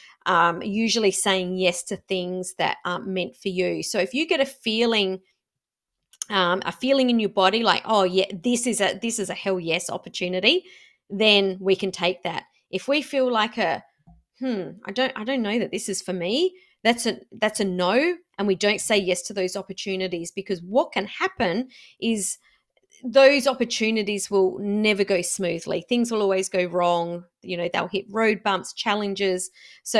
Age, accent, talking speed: 30-49, Australian, 185 wpm